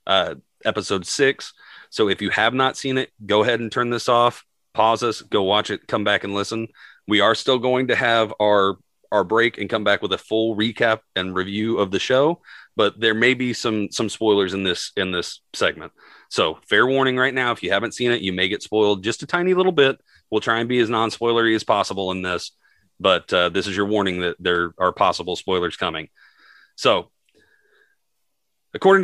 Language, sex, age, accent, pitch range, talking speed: English, male, 30-49, American, 95-125 Hz, 210 wpm